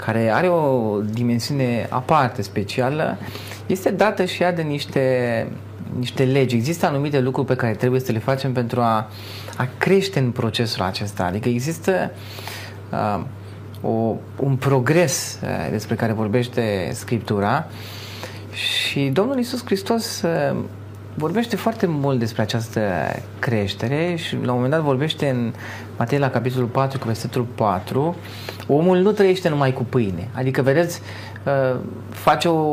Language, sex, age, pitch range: Romanian, male, 30-49, 110-145 Hz